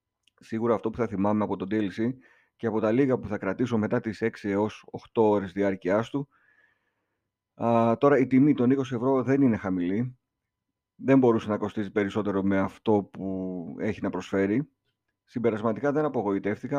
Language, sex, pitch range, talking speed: Greek, male, 105-130 Hz, 170 wpm